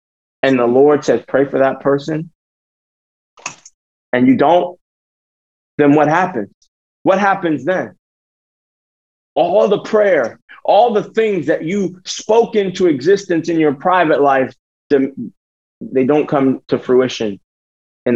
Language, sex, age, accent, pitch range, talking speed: English, male, 30-49, American, 140-210 Hz, 125 wpm